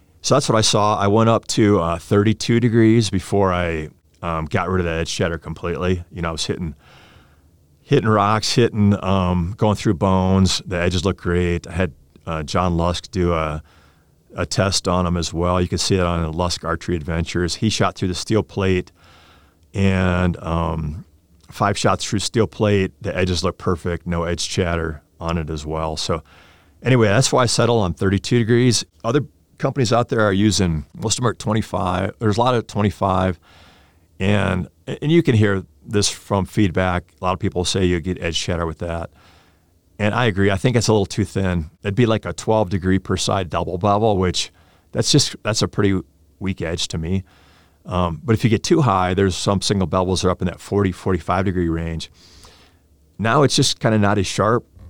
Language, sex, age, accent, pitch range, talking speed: English, male, 30-49, American, 85-105 Hz, 200 wpm